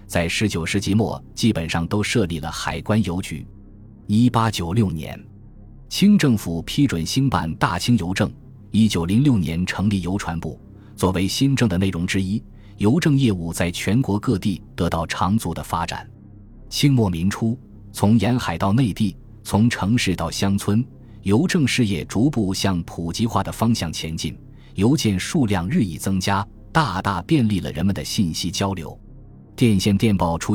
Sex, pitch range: male, 90-115 Hz